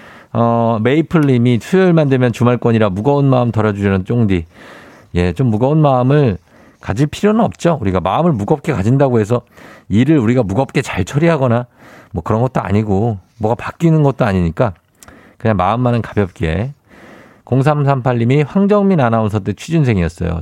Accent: native